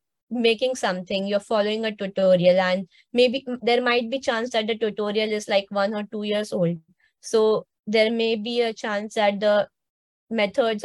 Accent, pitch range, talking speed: Indian, 200-240 Hz, 170 wpm